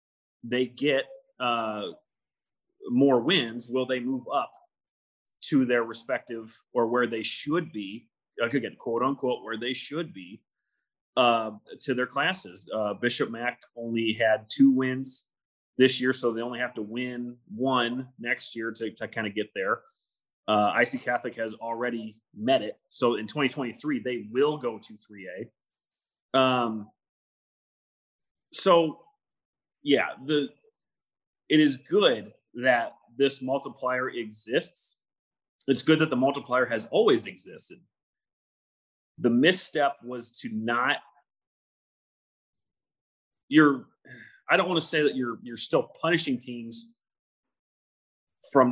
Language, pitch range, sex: English, 115-135 Hz, male